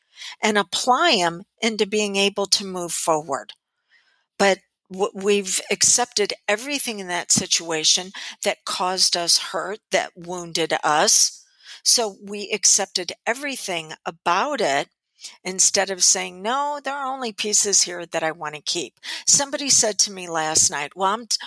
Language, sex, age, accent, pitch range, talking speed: English, female, 50-69, American, 180-245 Hz, 145 wpm